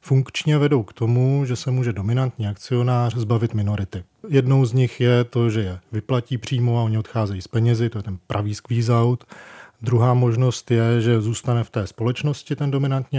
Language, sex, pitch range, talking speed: Czech, male, 115-130 Hz, 185 wpm